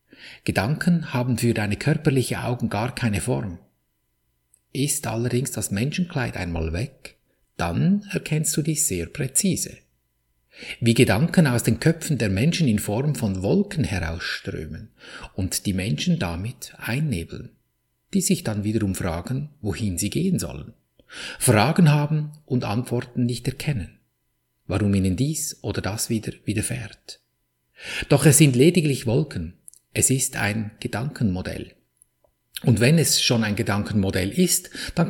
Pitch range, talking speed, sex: 95-140 Hz, 130 wpm, male